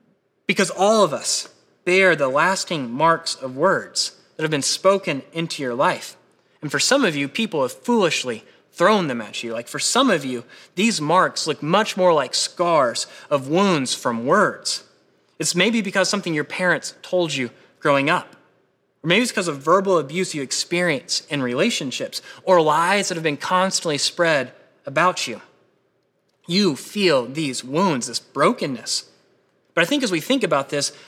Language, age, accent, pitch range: English, 20-39, American, 150-195 Hz